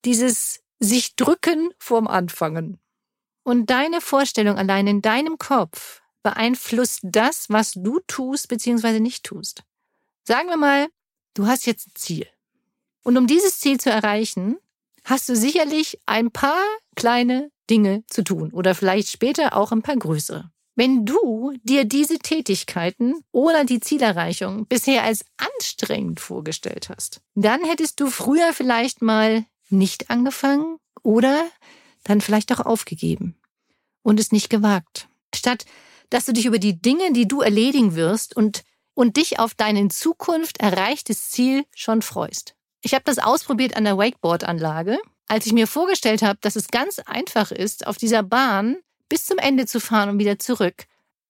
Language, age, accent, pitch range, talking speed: German, 50-69, German, 210-275 Hz, 150 wpm